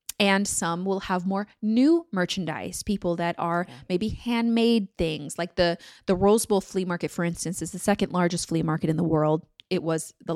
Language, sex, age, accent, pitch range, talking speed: English, female, 20-39, American, 175-210 Hz, 195 wpm